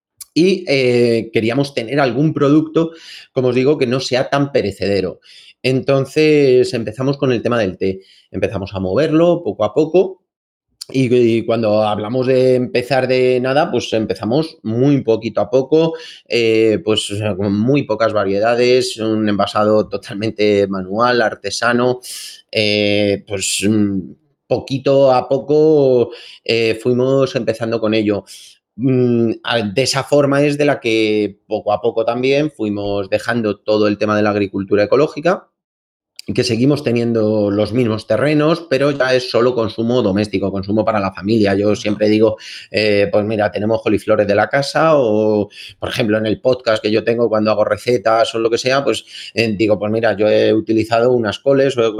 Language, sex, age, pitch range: Spanish, male, 30-49, 105-130 Hz